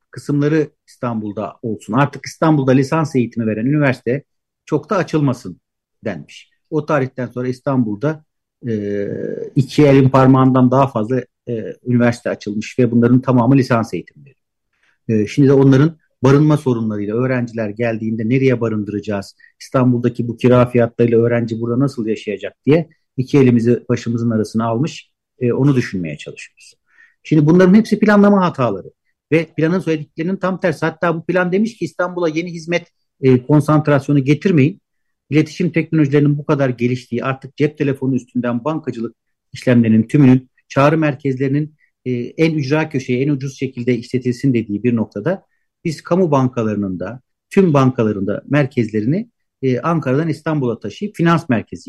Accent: native